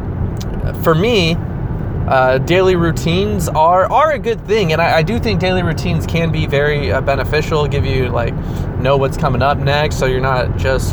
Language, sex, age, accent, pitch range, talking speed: English, male, 20-39, American, 120-145 Hz, 185 wpm